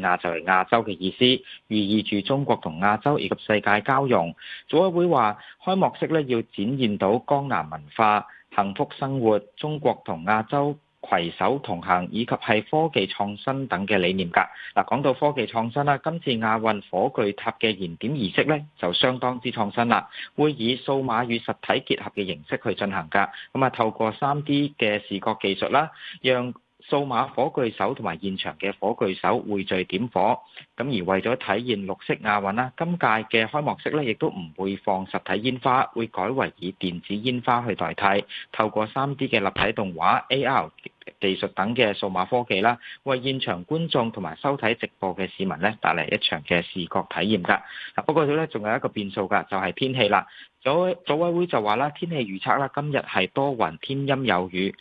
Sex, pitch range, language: male, 100-135 Hz, Chinese